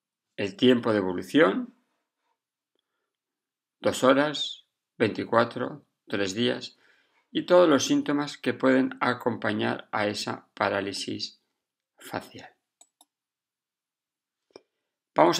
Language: Spanish